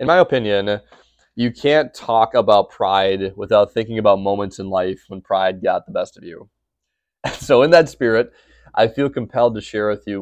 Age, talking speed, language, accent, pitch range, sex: 20-39, 190 wpm, English, American, 100-120 Hz, male